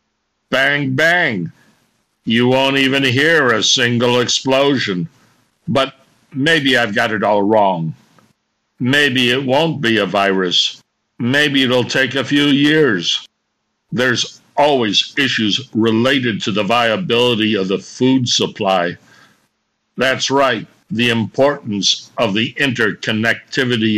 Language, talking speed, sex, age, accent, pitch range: English, 115 wpm, male, 60-79, American, 110-135 Hz